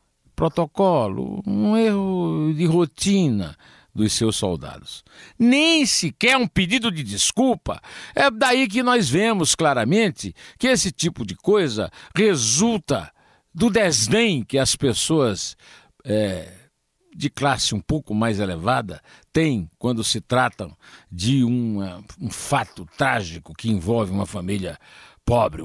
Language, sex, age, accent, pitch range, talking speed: Portuguese, male, 60-79, Brazilian, 110-185 Hz, 115 wpm